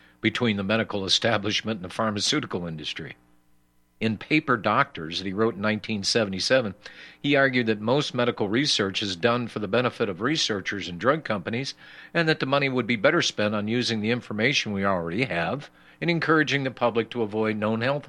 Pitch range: 85-125 Hz